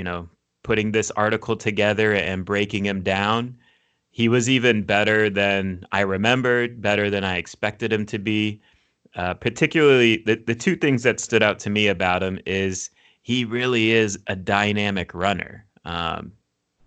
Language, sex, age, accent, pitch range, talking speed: English, male, 30-49, American, 95-115 Hz, 160 wpm